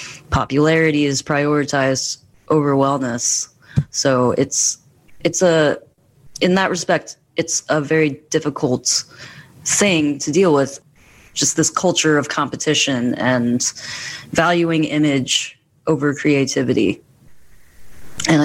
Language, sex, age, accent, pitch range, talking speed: English, female, 30-49, American, 130-150 Hz, 100 wpm